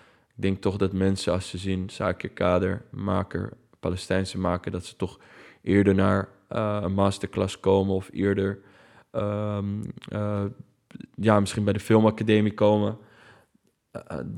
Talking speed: 140 wpm